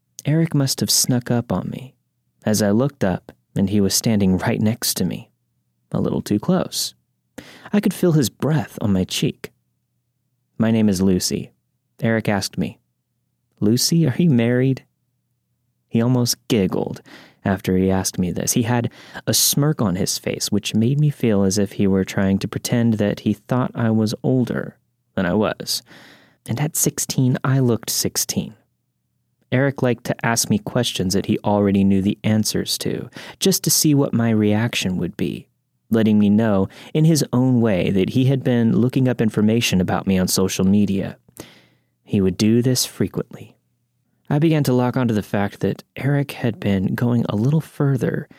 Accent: American